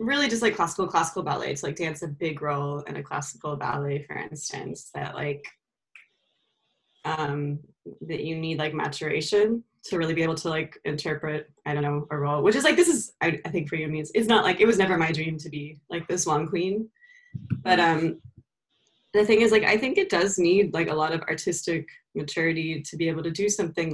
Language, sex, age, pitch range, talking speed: English, female, 20-39, 150-205 Hz, 220 wpm